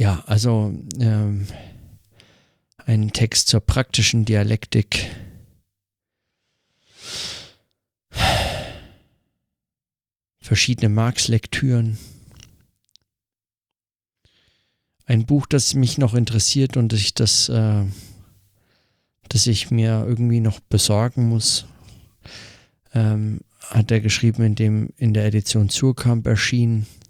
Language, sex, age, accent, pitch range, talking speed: German, male, 50-69, German, 105-120 Hz, 80 wpm